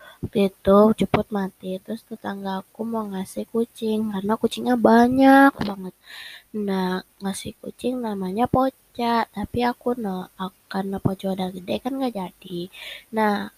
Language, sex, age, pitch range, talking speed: Indonesian, female, 20-39, 190-230 Hz, 130 wpm